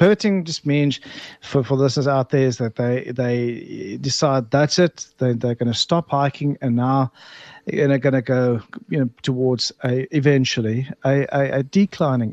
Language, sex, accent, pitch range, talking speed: English, male, South African, 125-175 Hz, 180 wpm